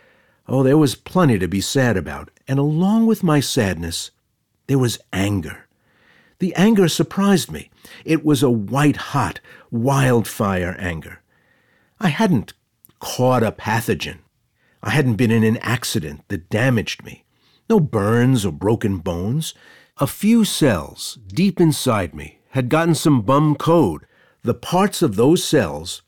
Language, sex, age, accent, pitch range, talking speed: English, male, 50-69, American, 110-155 Hz, 140 wpm